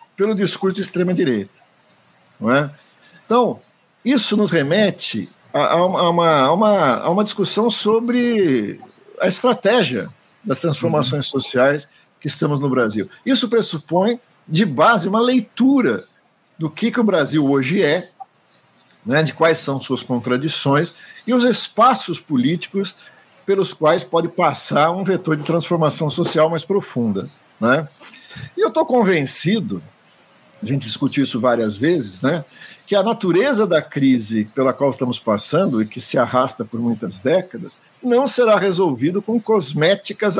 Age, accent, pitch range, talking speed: 50-69, Brazilian, 135-200 Hz, 140 wpm